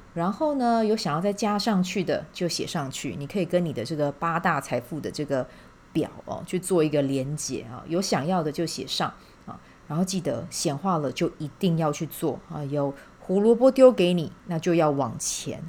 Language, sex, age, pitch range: Chinese, female, 30-49, 150-190 Hz